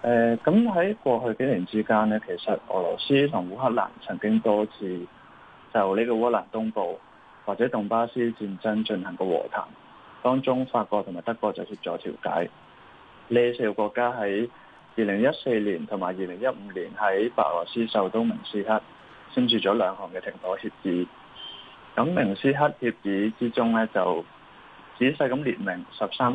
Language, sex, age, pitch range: Chinese, male, 20-39, 105-125 Hz